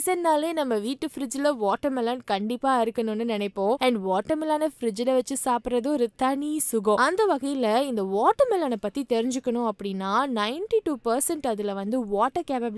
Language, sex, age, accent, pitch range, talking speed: Tamil, female, 20-39, native, 215-295 Hz, 80 wpm